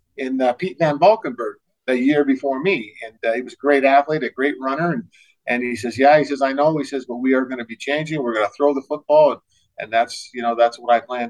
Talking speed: 280 wpm